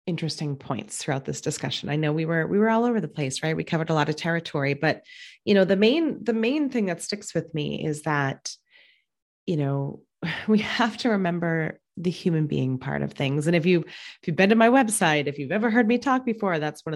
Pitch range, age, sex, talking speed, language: 150-215 Hz, 30-49, female, 235 wpm, English